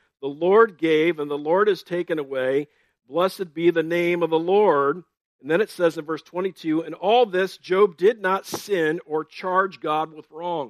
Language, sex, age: English, male, 50-69